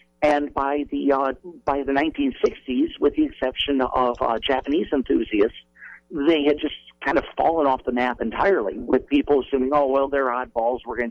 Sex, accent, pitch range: male, American, 120-150 Hz